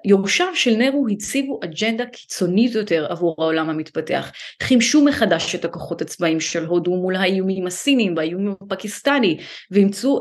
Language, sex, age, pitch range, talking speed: Hebrew, female, 30-49, 190-250 Hz, 135 wpm